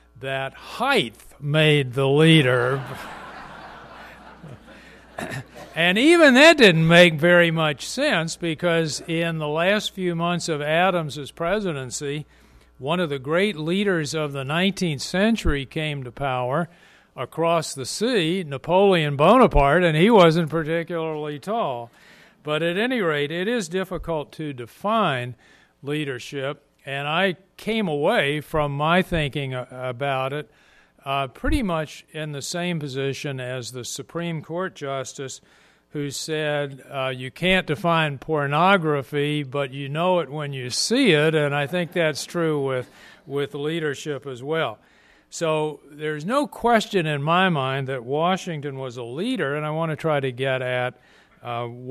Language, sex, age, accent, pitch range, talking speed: English, male, 50-69, American, 135-175 Hz, 140 wpm